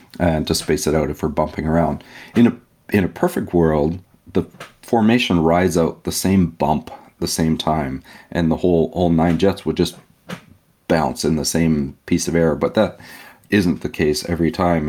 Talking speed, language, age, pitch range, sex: 190 wpm, English, 40-59, 75-85 Hz, male